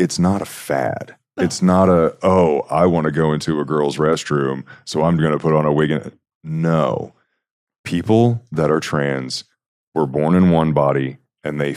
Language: English